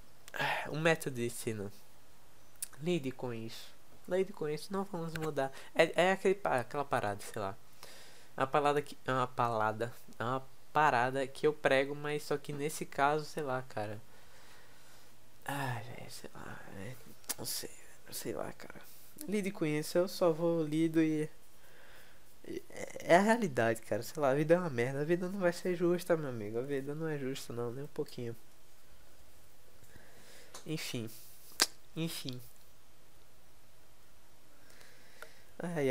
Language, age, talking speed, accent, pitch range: Portuguese, 20-39, 145 wpm, Brazilian, 120-165 Hz